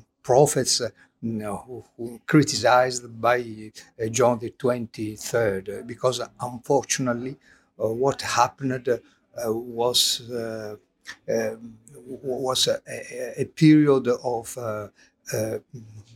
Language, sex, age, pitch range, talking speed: English, male, 50-69, 110-130 Hz, 95 wpm